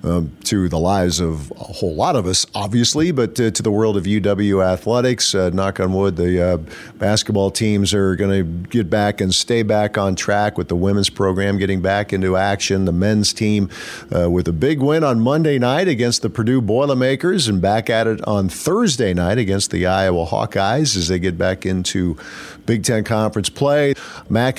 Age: 50-69